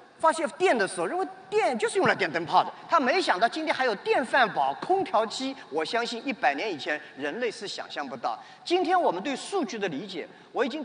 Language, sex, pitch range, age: Chinese, male, 230-340 Hz, 40-59